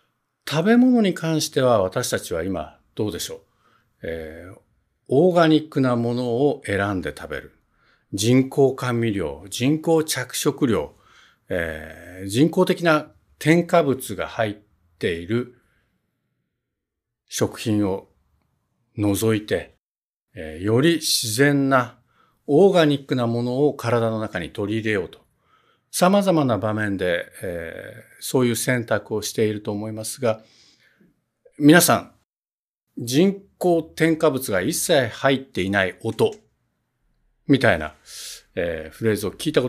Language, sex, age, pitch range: Japanese, male, 60-79, 100-155 Hz